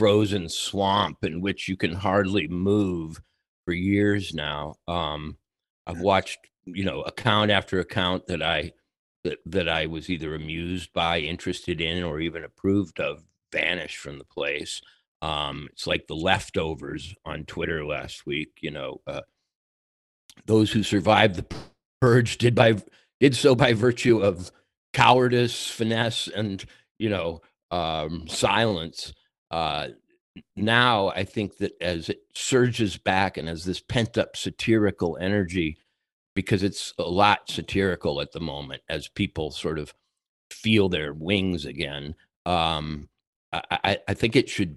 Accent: American